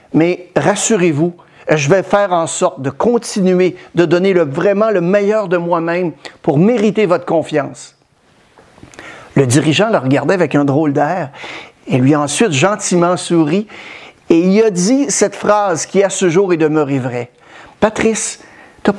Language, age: French, 60-79